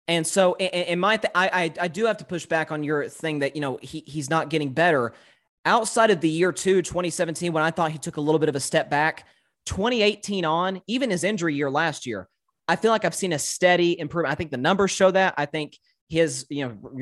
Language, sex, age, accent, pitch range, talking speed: English, male, 30-49, American, 145-180 Hz, 240 wpm